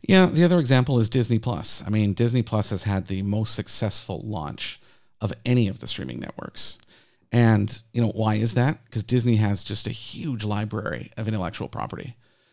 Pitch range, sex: 110-130 Hz, male